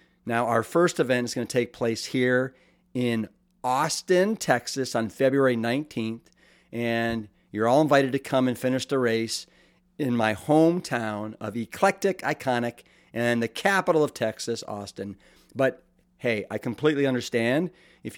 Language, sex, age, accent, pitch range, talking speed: English, male, 50-69, American, 110-145 Hz, 145 wpm